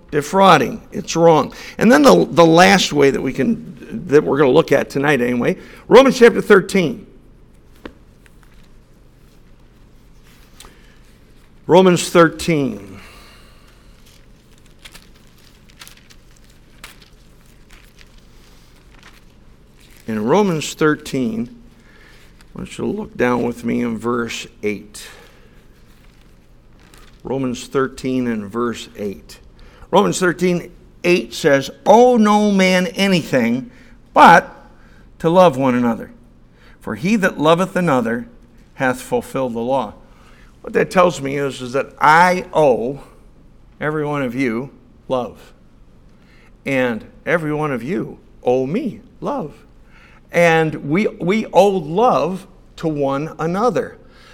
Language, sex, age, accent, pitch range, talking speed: English, male, 60-79, American, 115-180 Hz, 105 wpm